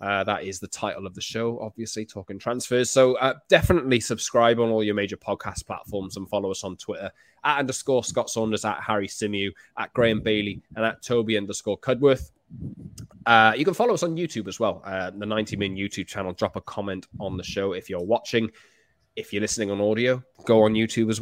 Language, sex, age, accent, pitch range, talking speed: English, male, 20-39, British, 100-130 Hz, 210 wpm